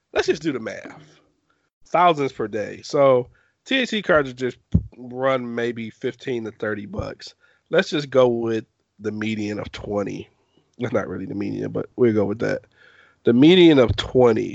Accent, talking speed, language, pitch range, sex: American, 160 wpm, English, 110-135 Hz, male